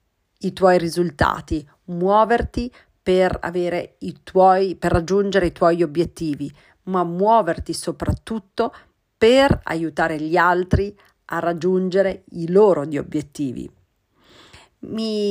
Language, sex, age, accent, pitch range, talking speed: Italian, female, 40-59, native, 165-195 Hz, 100 wpm